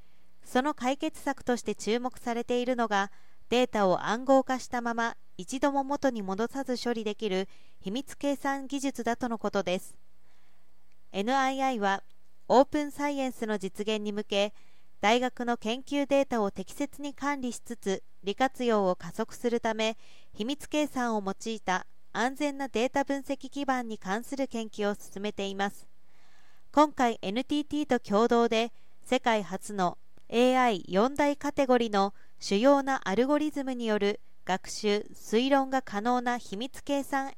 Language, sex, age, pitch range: Japanese, female, 40-59, 200-265 Hz